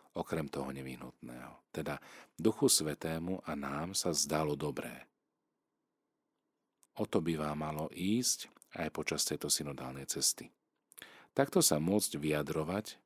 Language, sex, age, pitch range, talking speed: Slovak, male, 40-59, 70-90 Hz, 120 wpm